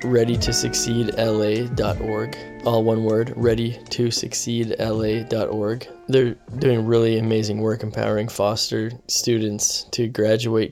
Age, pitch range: 10-29, 105-120 Hz